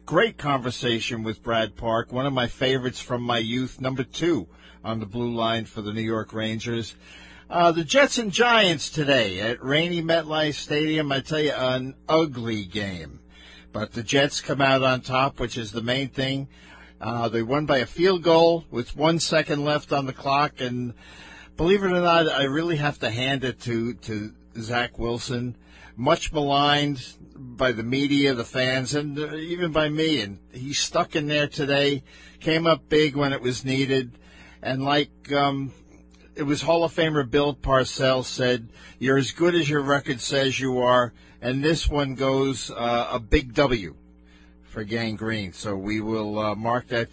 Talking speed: 180 wpm